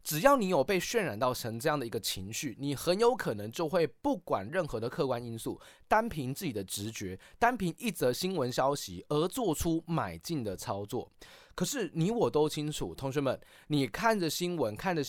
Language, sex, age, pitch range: Chinese, male, 20-39, 120-175 Hz